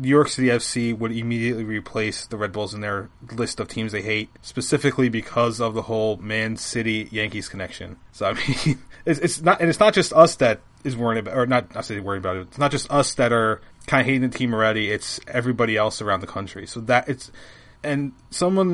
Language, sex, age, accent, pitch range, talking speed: English, male, 20-39, American, 110-135 Hz, 225 wpm